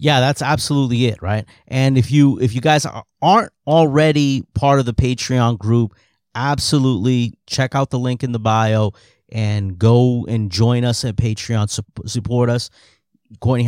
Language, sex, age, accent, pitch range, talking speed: English, male, 30-49, American, 110-140 Hz, 160 wpm